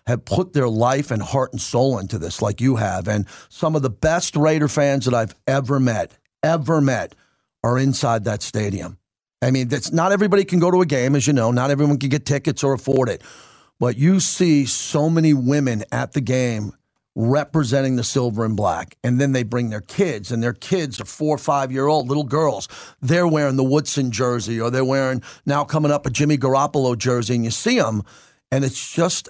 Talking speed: 205 wpm